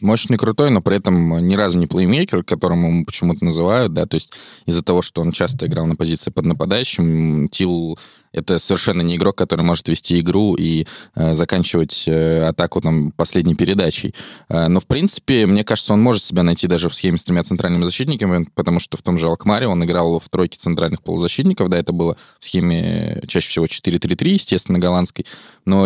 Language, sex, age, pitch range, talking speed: Russian, male, 20-39, 85-95 Hz, 195 wpm